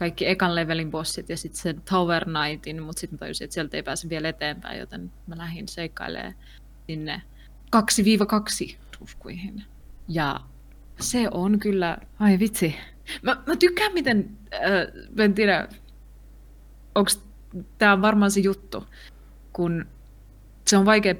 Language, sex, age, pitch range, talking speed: Finnish, female, 20-39, 160-210 Hz, 125 wpm